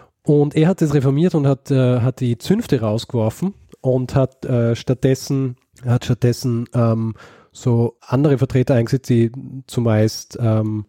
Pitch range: 110-130 Hz